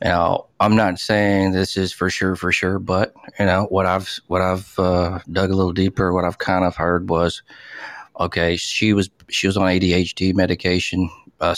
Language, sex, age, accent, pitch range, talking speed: English, male, 40-59, American, 90-100 Hz, 190 wpm